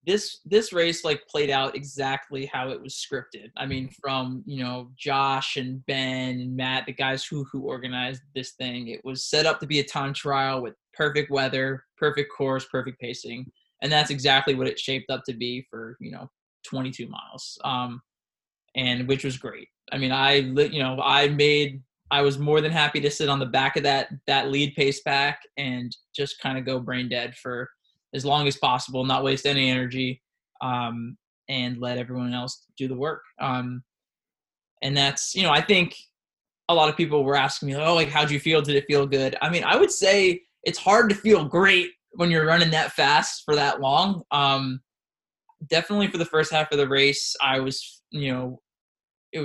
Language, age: English, 20-39